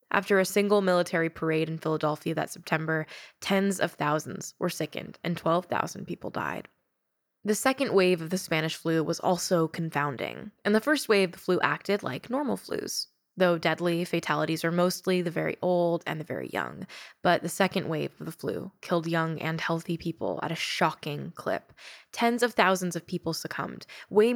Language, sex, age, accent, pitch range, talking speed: English, female, 10-29, American, 165-195 Hz, 180 wpm